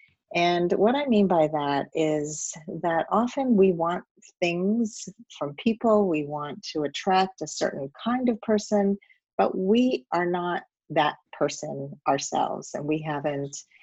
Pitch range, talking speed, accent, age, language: 150-200 Hz, 145 wpm, American, 40-59, English